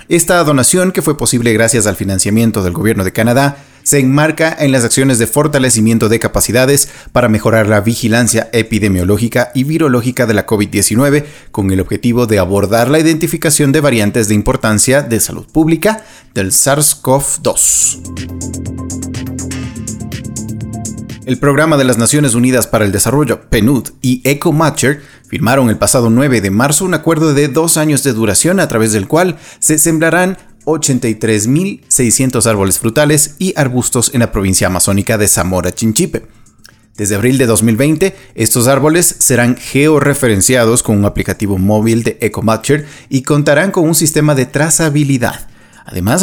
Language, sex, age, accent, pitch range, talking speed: Spanish, male, 30-49, Mexican, 110-150 Hz, 145 wpm